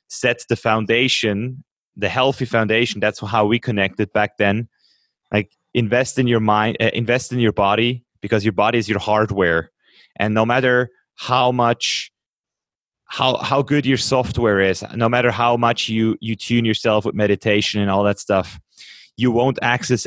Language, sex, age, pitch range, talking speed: German, male, 20-39, 100-115 Hz, 165 wpm